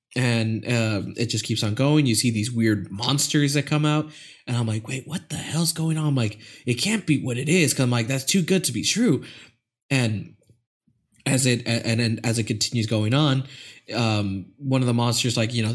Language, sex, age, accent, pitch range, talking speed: English, male, 20-39, American, 115-165 Hz, 225 wpm